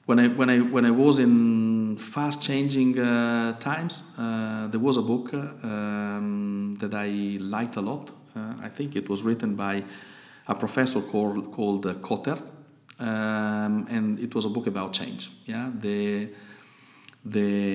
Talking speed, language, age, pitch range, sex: 160 wpm, Romanian, 50-69, 105-130 Hz, male